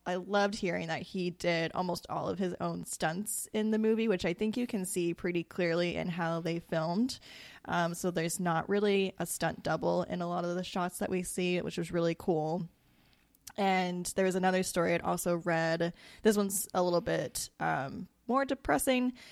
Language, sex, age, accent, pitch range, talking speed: English, female, 10-29, American, 170-200 Hz, 200 wpm